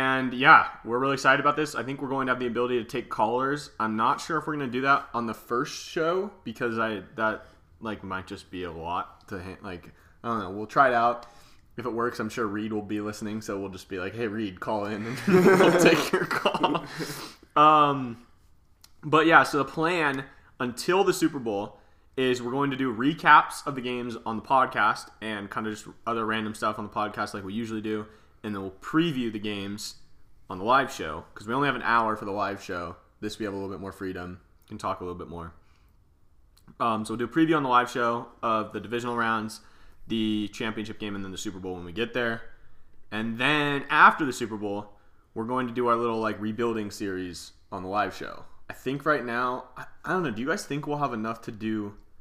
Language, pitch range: English, 100-125 Hz